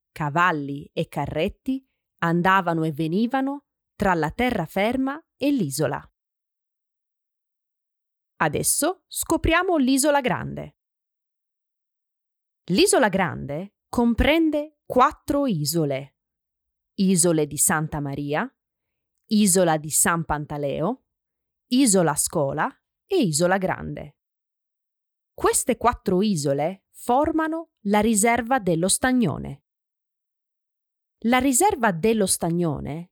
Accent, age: native, 20-39